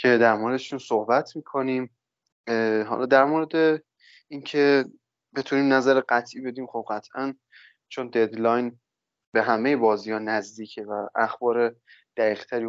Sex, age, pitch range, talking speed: male, 20-39, 110-130 Hz, 115 wpm